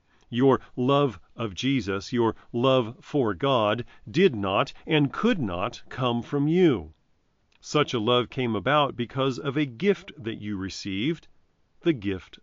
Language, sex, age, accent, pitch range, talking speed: English, male, 40-59, American, 105-150 Hz, 145 wpm